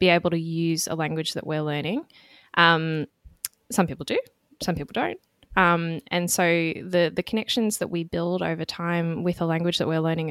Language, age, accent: English, 10-29, Australian